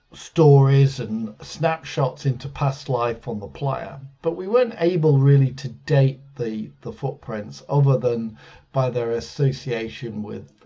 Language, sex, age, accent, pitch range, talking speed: English, male, 50-69, British, 115-145 Hz, 140 wpm